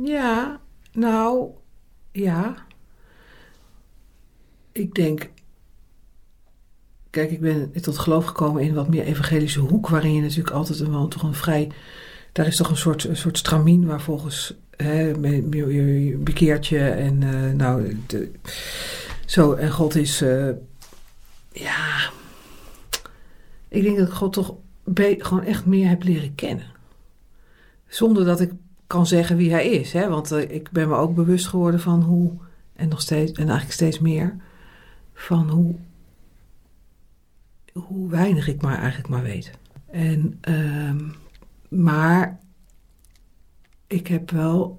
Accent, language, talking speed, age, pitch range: Dutch, Dutch, 135 wpm, 50-69, 150-190 Hz